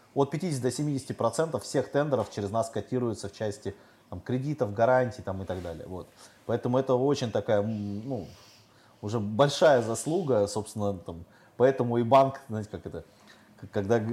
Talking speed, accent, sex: 140 wpm, native, male